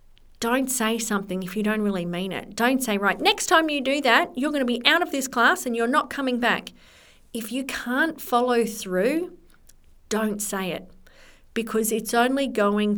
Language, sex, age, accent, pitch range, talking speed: English, female, 40-59, Australian, 190-245 Hz, 195 wpm